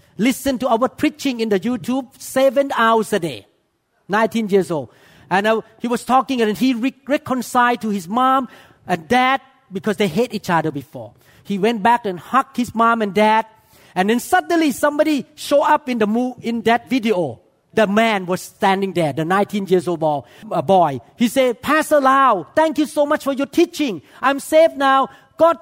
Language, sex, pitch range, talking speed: English, male, 195-270 Hz, 190 wpm